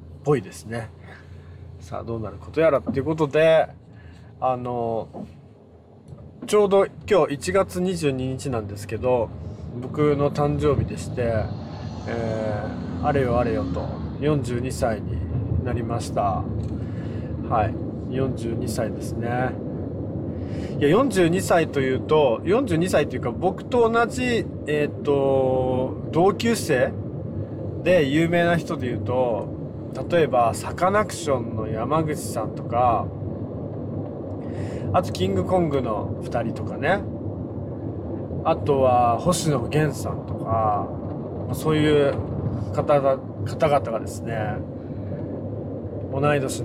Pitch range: 110-145 Hz